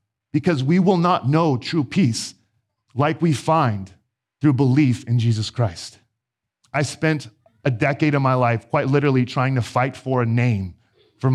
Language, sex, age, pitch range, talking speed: English, male, 40-59, 110-150 Hz, 165 wpm